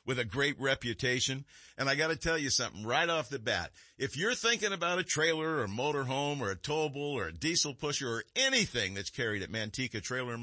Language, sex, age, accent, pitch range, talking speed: English, male, 50-69, American, 115-160 Hz, 220 wpm